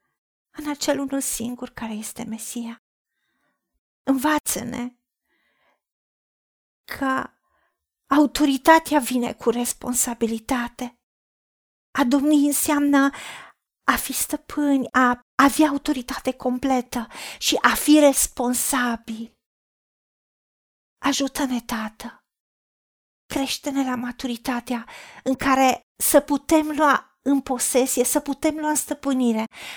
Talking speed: 90 wpm